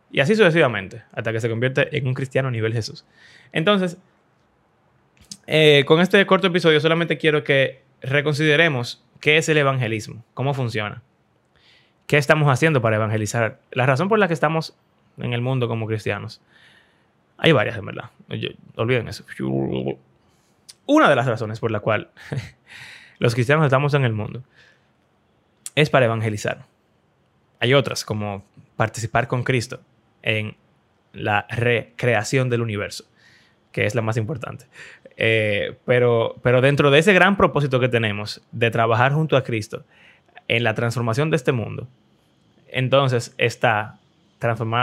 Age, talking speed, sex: 20-39, 145 wpm, male